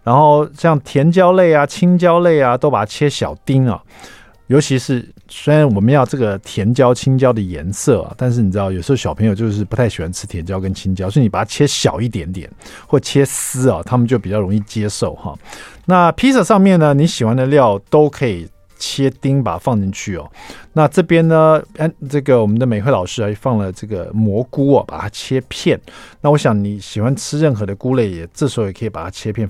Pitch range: 105-155 Hz